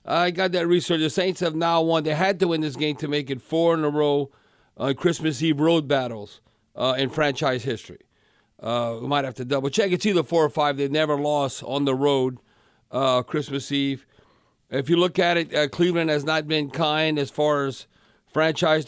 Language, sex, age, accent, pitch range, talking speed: English, male, 50-69, American, 140-165 Hz, 215 wpm